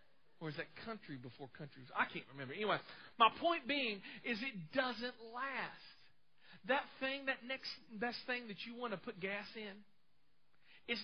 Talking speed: 170 wpm